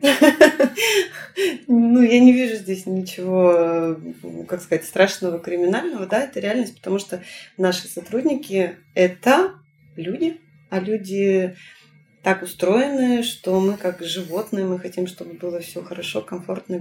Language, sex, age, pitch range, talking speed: Russian, female, 20-39, 180-235 Hz, 125 wpm